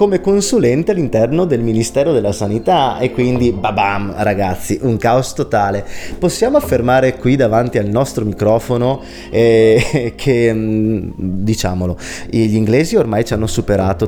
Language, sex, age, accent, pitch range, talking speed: Italian, male, 20-39, native, 100-120 Hz, 130 wpm